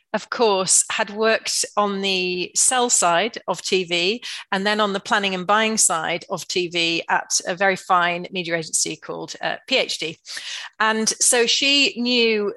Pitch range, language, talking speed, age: 185-240 Hz, English, 160 wpm, 40-59